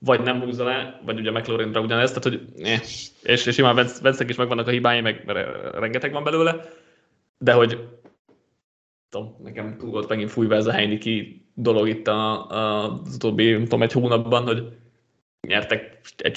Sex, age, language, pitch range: male, 20-39, Hungarian, 110-130 Hz